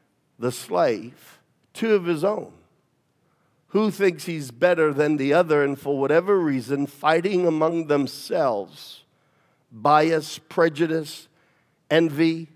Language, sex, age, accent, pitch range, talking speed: English, male, 50-69, American, 140-185 Hz, 110 wpm